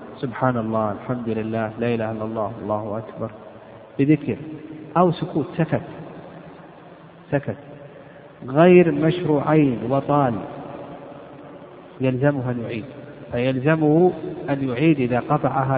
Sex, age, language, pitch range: male, 50-69, Arabic, 135-170 Hz